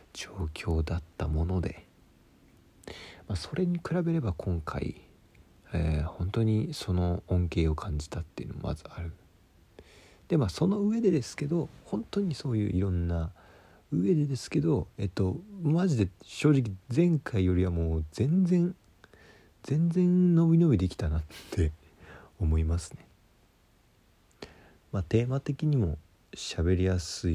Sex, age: male, 40-59